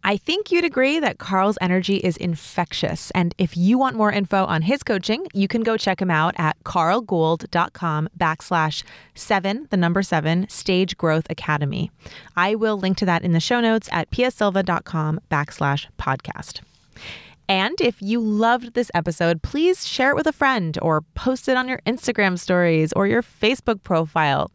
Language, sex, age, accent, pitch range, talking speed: English, female, 30-49, American, 170-225 Hz, 170 wpm